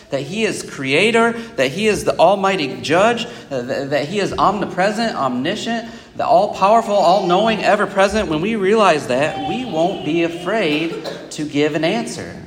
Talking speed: 165 wpm